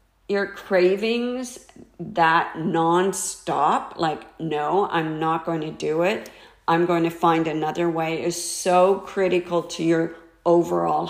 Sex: female